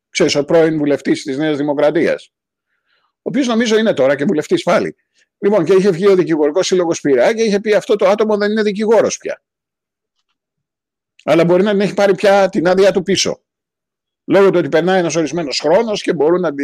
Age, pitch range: 50-69, 170-220 Hz